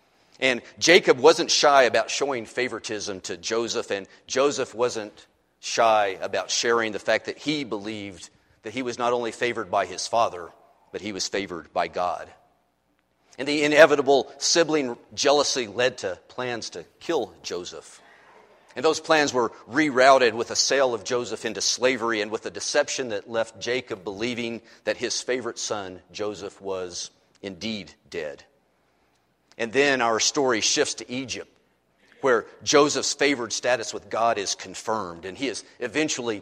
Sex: male